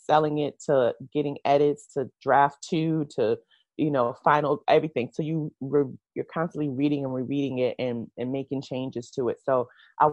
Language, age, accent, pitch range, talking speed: English, 30-49, American, 130-150 Hz, 180 wpm